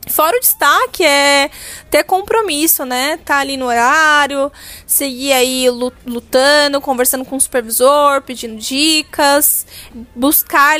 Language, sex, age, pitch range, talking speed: Portuguese, female, 10-29, 250-295 Hz, 115 wpm